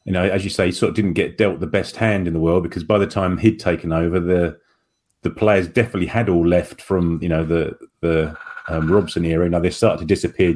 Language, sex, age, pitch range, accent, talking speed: English, male, 30-49, 85-110 Hz, British, 255 wpm